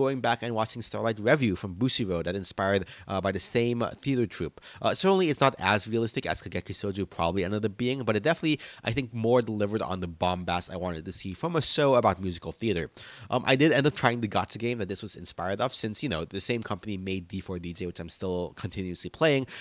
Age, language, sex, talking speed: 30-49, English, male, 235 wpm